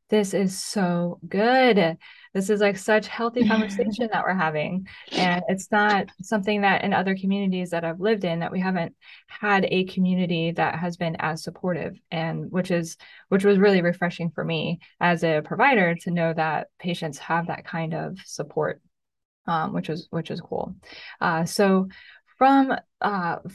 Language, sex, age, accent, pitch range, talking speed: English, female, 10-29, American, 170-205 Hz, 170 wpm